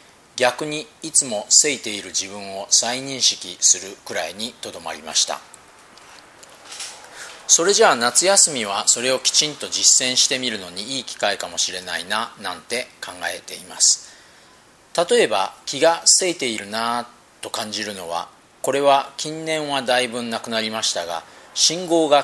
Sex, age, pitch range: male, 40-59, 110-160 Hz